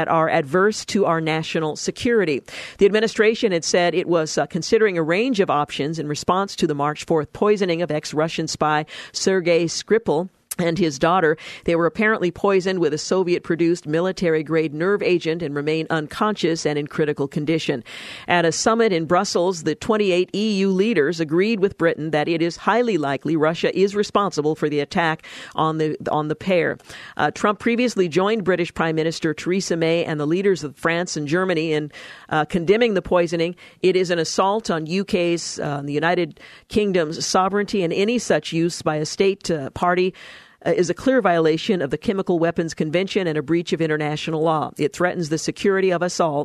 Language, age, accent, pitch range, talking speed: English, 50-69, American, 155-190 Hz, 185 wpm